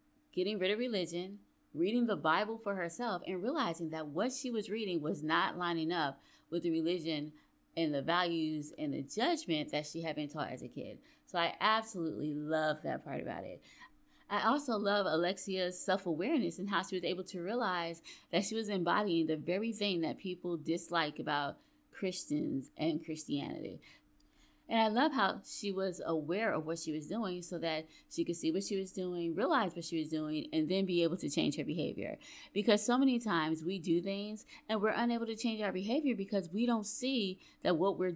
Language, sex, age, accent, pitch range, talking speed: English, female, 20-39, American, 165-205 Hz, 200 wpm